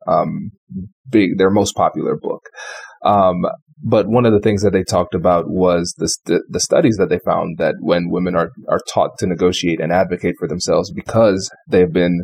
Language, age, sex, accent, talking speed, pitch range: English, 30-49, male, American, 195 wpm, 95-110 Hz